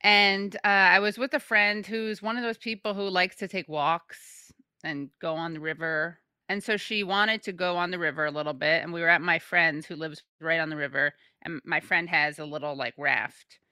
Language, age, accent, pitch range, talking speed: English, 30-49, American, 165-210 Hz, 235 wpm